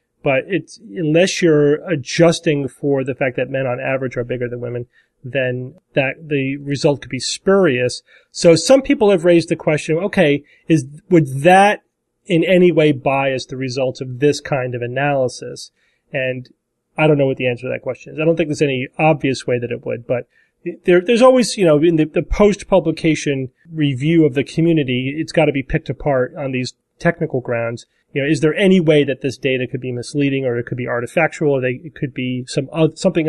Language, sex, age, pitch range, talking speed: English, male, 30-49, 130-165 Hz, 210 wpm